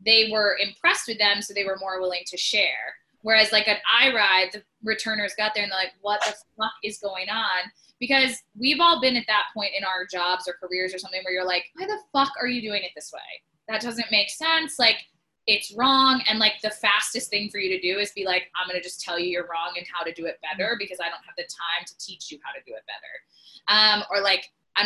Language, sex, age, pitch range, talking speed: English, female, 20-39, 180-220 Hz, 260 wpm